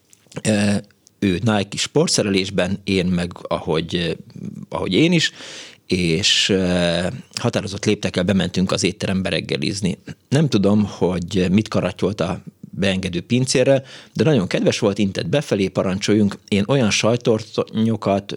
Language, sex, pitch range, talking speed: Hungarian, male, 95-110 Hz, 110 wpm